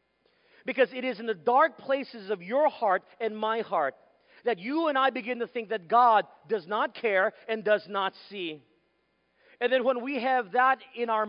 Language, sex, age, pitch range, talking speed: English, male, 40-59, 170-245 Hz, 195 wpm